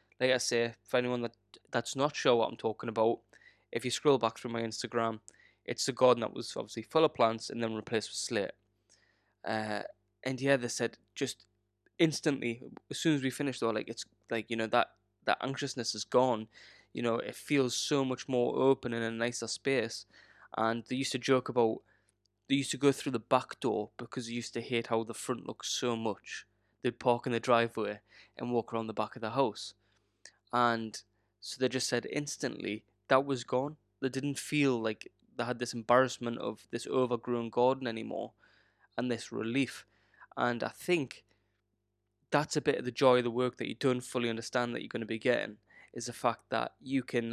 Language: English